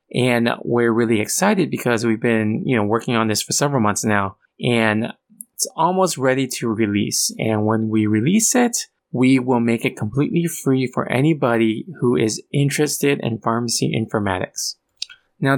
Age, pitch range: 20-39, 110-135 Hz